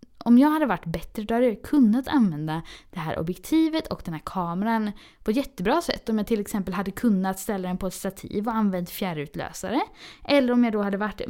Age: 20-39